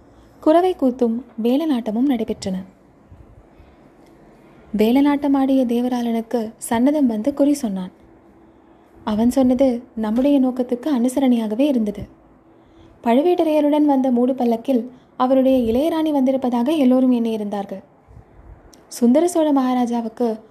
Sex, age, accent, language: female, 20-39, native, Tamil